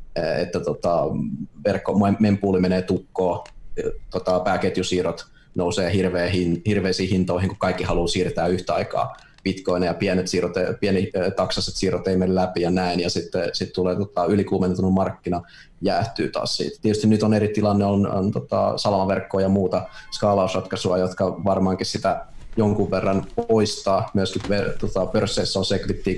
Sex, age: male, 30-49